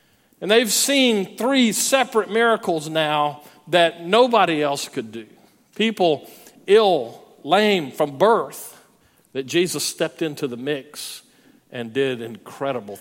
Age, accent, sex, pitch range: 50-69, American, male, 145-195 Hz